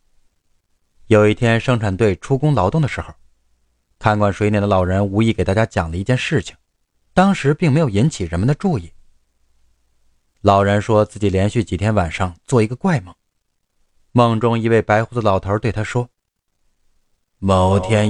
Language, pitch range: Chinese, 100-135 Hz